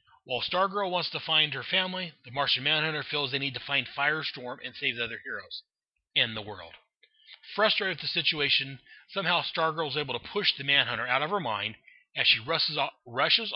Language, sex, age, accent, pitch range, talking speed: English, male, 30-49, American, 125-165 Hz, 190 wpm